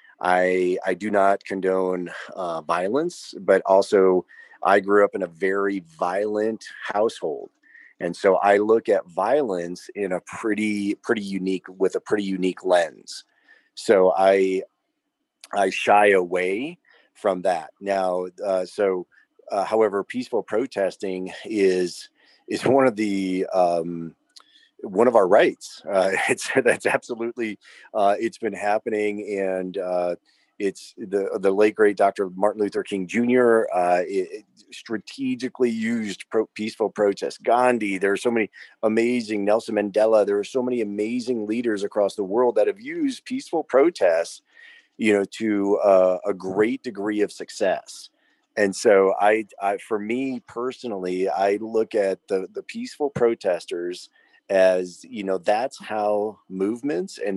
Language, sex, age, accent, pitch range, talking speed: English, male, 30-49, American, 95-115 Hz, 140 wpm